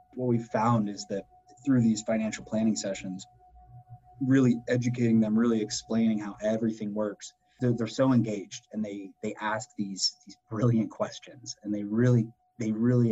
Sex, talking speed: male, 160 wpm